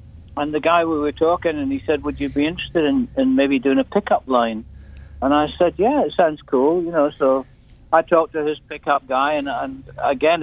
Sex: male